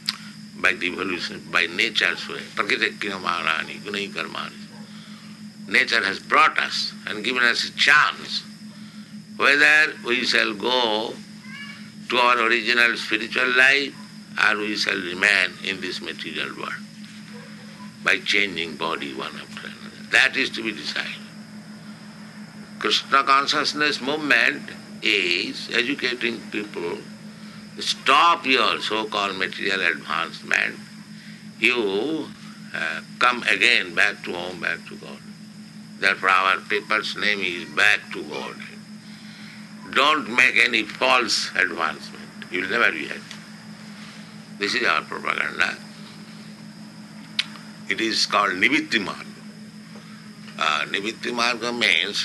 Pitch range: 205-210 Hz